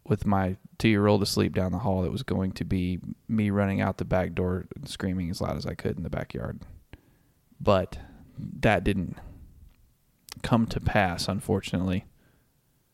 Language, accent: English, American